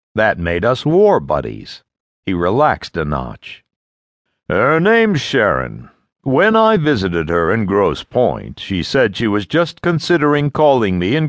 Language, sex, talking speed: English, male, 150 wpm